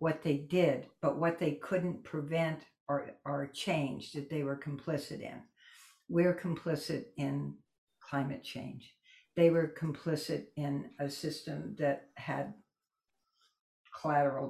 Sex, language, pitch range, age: female, English, 145-180 Hz, 60-79